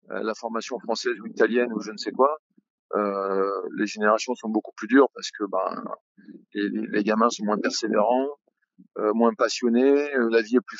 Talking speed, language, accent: 190 wpm, French, French